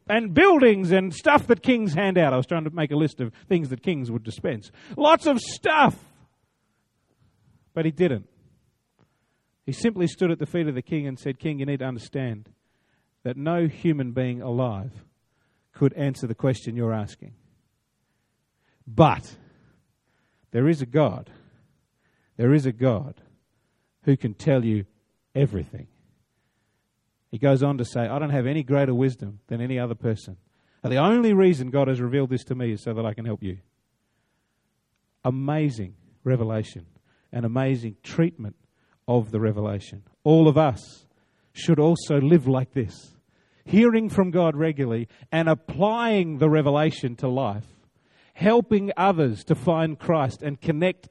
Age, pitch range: 40-59, 120-175 Hz